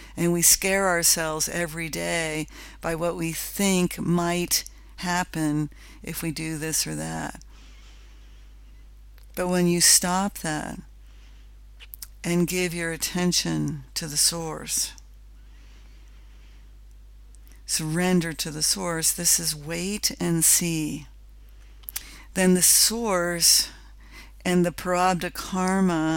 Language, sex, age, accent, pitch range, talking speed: English, female, 60-79, American, 160-185 Hz, 105 wpm